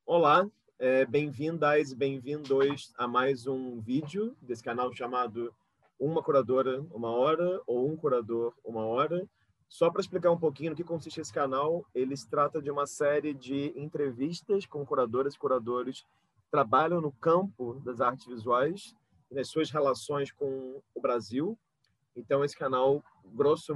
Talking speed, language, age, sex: 155 wpm, Portuguese, 30-49, male